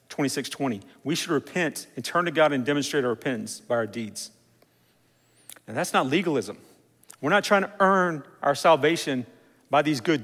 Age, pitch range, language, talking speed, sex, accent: 40-59, 120-160 Hz, English, 170 wpm, male, American